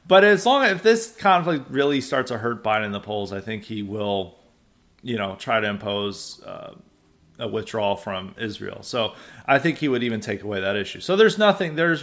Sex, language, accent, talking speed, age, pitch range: male, English, American, 210 wpm, 30-49, 110-145 Hz